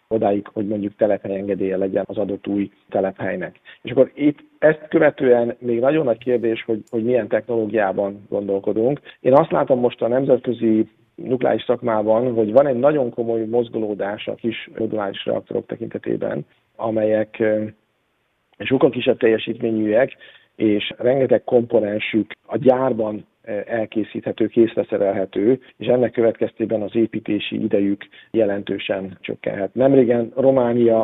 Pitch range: 105-120 Hz